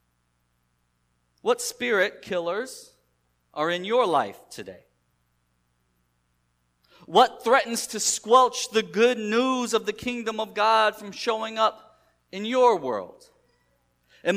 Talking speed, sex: 115 wpm, male